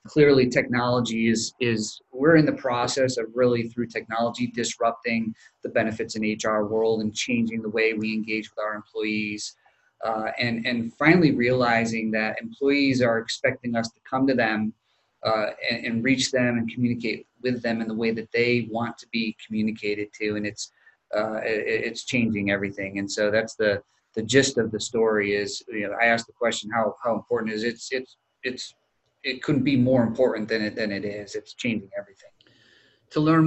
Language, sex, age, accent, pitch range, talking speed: English, male, 30-49, American, 110-130 Hz, 185 wpm